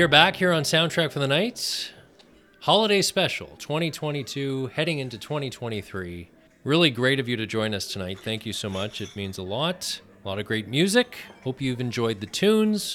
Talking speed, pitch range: 185 wpm, 100-150 Hz